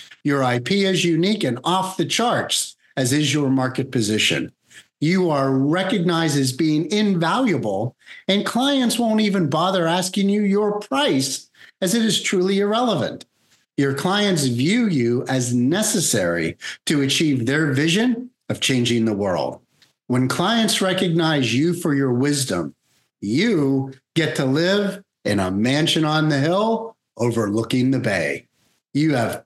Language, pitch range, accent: English, 130-200 Hz, American